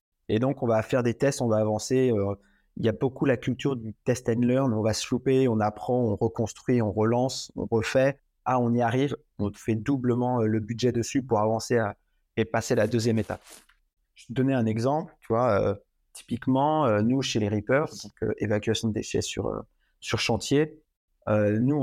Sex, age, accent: male, 30-49, French